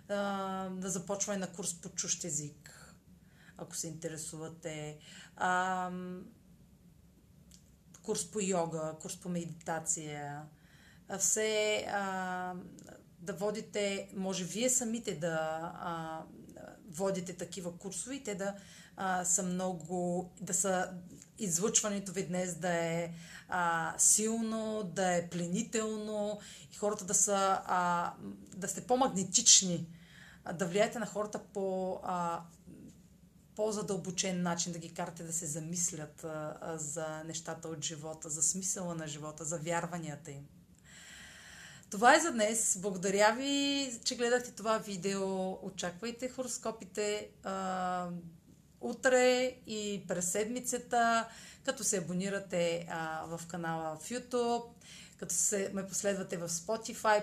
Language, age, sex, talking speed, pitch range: Bulgarian, 30-49, female, 120 wpm, 170-210 Hz